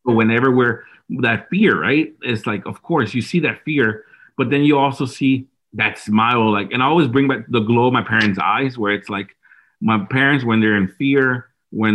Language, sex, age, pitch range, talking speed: English, male, 40-59, 110-135 Hz, 215 wpm